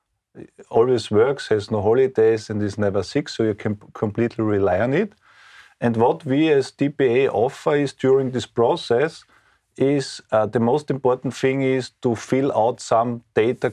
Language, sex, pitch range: Slovak, male, 105-130 Hz